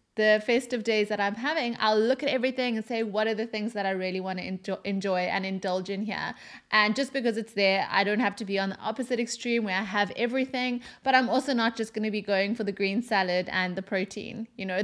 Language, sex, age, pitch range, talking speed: English, female, 20-39, 200-245 Hz, 250 wpm